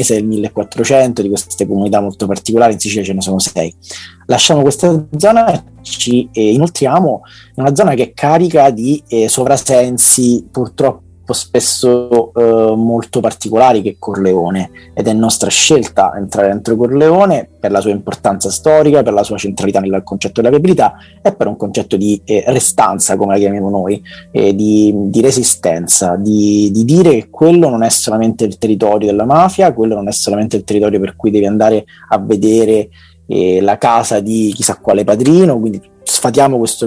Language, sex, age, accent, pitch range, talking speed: Italian, male, 30-49, native, 100-125 Hz, 170 wpm